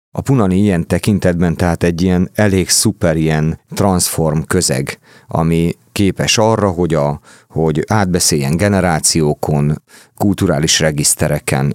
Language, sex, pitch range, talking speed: Hungarian, male, 80-95 Hz, 105 wpm